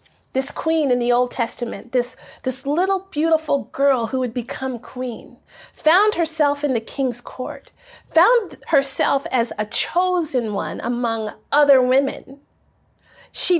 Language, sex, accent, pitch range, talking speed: English, female, American, 245-320 Hz, 135 wpm